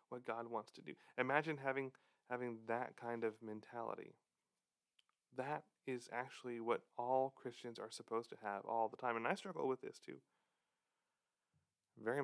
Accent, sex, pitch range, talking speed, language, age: American, male, 105-125 Hz, 155 wpm, English, 30-49